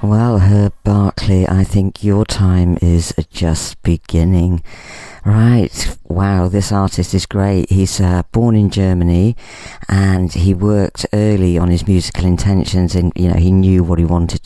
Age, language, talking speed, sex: 40-59, English, 155 wpm, female